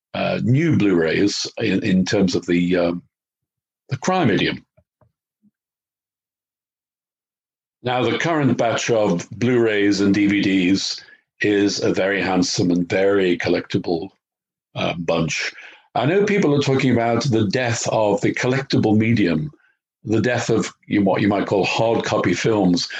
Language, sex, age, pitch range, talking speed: English, male, 50-69, 95-125 Hz, 135 wpm